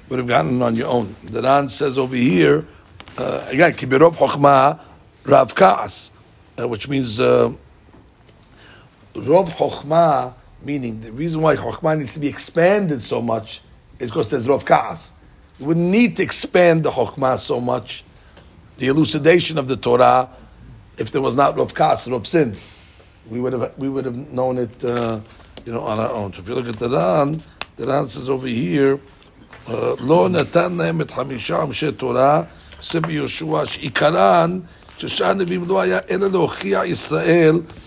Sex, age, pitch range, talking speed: male, 60-79, 115-165 Hz, 135 wpm